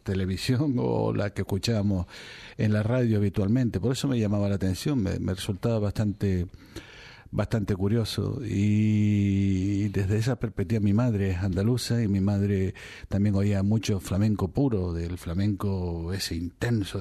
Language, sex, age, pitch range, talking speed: Spanish, male, 50-69, 95-115 Hz, 145 wpm